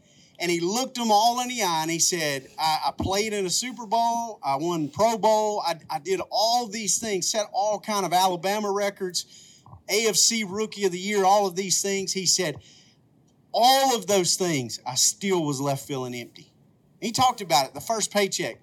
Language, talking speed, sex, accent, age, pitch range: English, 200 wpm, male, American, 40-59, 150-210 Hz